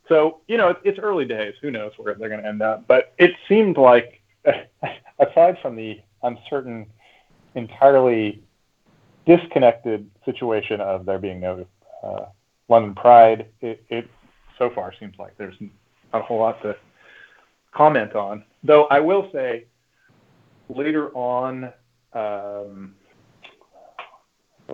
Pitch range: 105-145 Hz